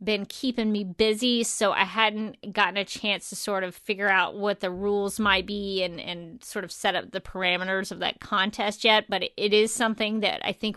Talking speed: 215 wpm